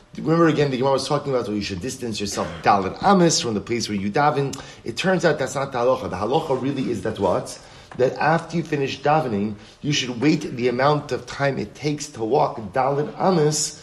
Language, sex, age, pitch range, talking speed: English, male, 30-49, 115-150 Hz, 220 wpm